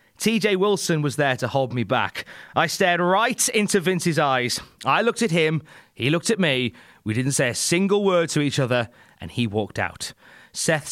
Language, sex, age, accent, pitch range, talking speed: English, male, 30-49, British, 130-185 Hz, 200 wpm